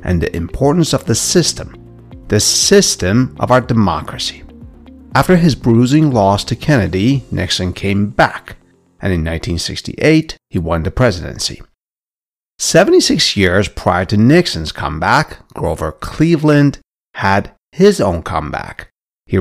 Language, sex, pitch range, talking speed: English, male, 90-145 Hz, 125 wpm